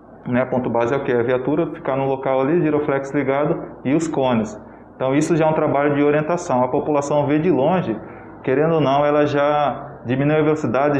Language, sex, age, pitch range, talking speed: Portuguese, male, 20-39, 130-150 Hz, 215 wpm